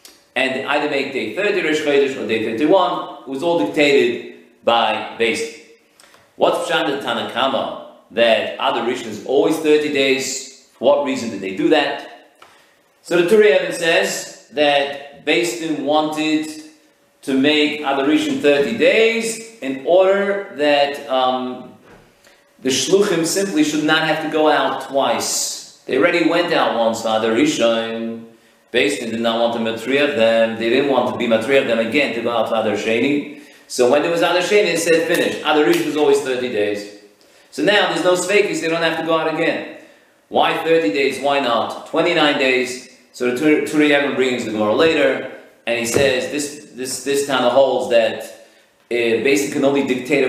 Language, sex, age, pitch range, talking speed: English, male, 40-59, 120-155 Hz, 165 wpm